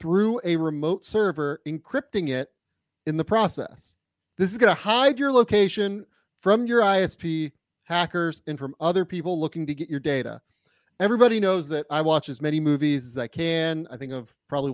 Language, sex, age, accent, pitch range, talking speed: English, male, 30-49, American, 140-190 Hz, 180 wpm